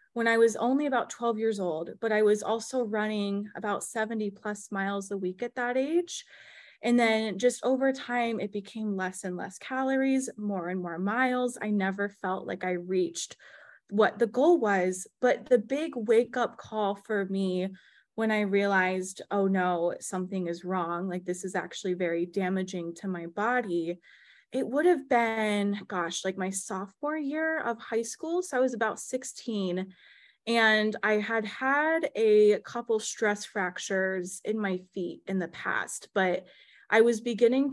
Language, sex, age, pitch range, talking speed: English, female, 20-39, 190-235 Hz, 170 wpm